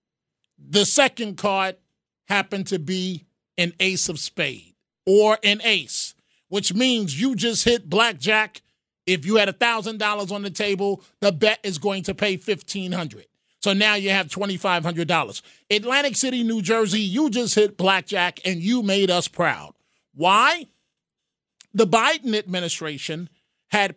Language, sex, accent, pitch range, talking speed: English, male, American, 175-210 Hz, 140 wpm